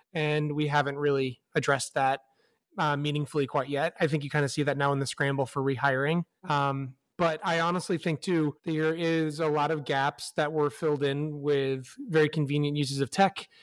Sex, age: male, 30-49